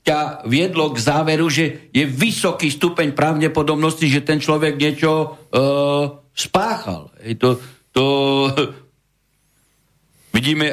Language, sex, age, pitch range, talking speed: Slovak, male, 60-79, 135-175 Hz, 100 wpm